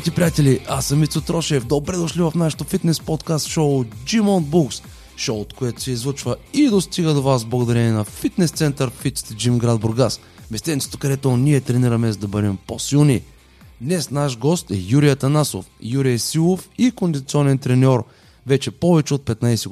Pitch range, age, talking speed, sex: 120-165 Hz, 30-49, 170 wpm, male